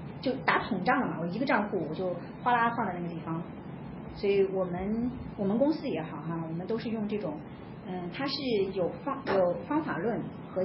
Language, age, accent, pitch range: Chinese, 40-59, native, 185-240 Hz